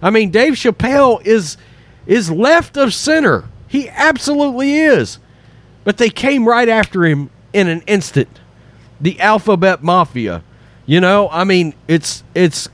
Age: 40-59